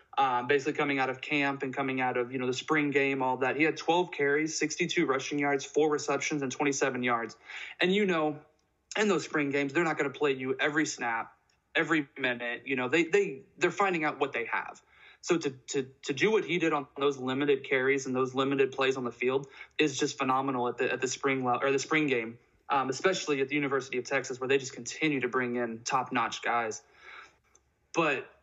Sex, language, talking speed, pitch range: male, English, 220 wpm, 130-160 Hz